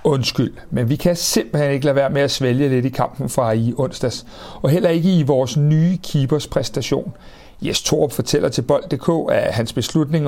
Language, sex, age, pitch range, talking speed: Danish, male, 60-79, 120-155 Hz, 195 wpm